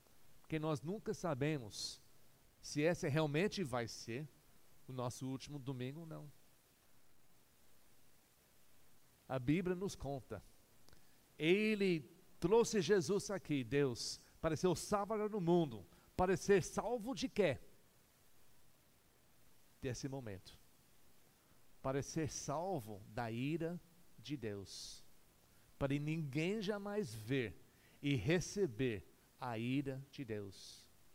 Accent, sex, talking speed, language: Brazilian, male, 105 wpm, Portuguese